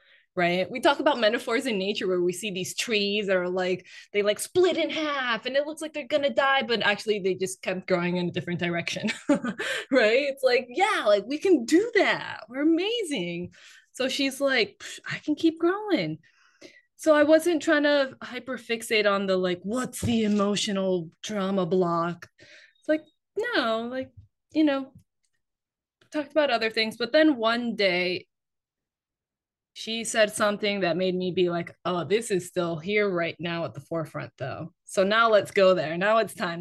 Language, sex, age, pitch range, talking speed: English, female, 20-39, 175-260 Hz, 185 wpm